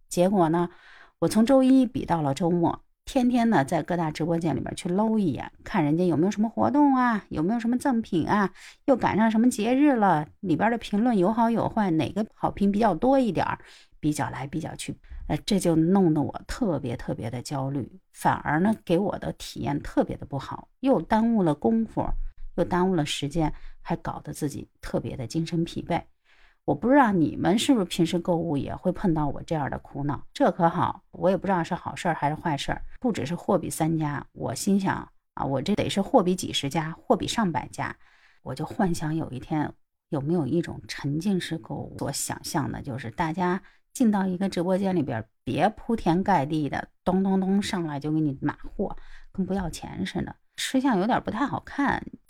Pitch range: 155-210 Hz